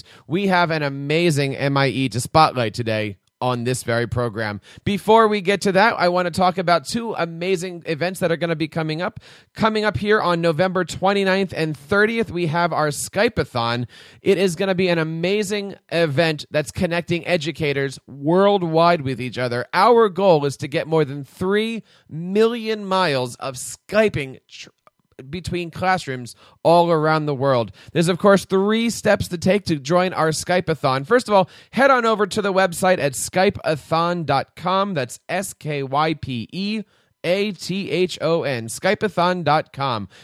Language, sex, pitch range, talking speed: English, male, 135-185 Hz, 160 wpm